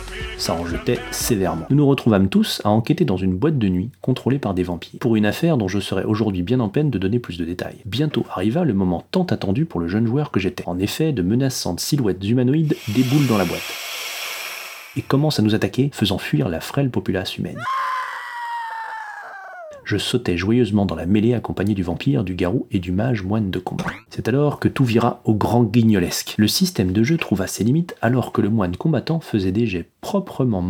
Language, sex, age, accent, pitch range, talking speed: French, male, 30-49, French, 100-150 Hz, 210 wpm